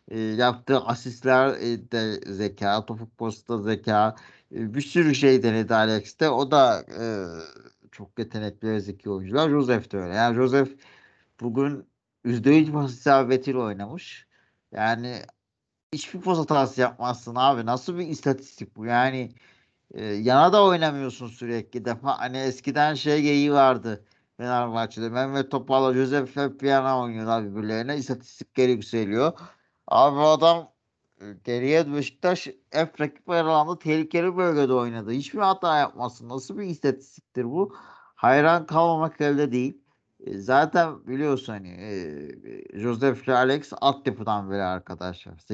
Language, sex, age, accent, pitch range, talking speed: Turkish, male, 50-69, native, 110-145 Hz, 125 wpm